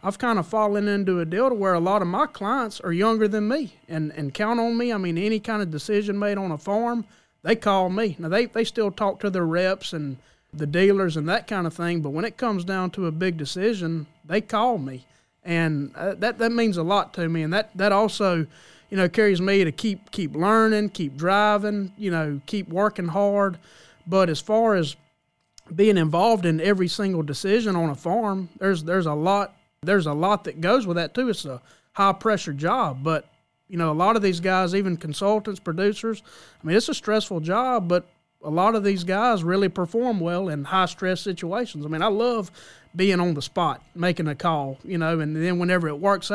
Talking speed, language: 215 wpm, English